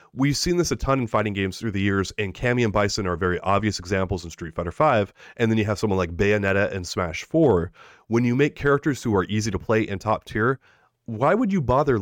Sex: male